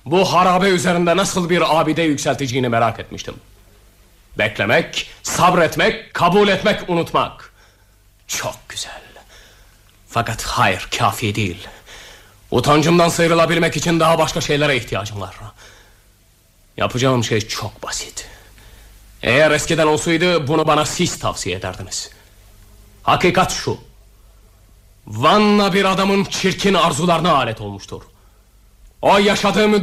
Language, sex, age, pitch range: Japanese, male, 30-49, 105-170 Hz